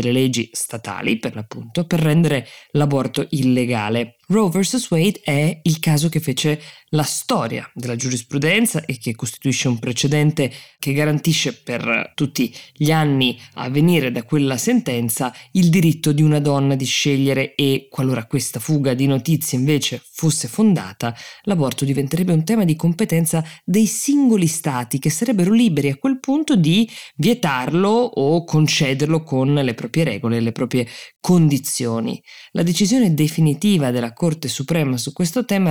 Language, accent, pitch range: Italian, native, 125-165 Hz